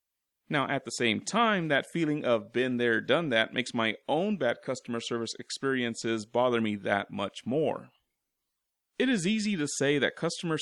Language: English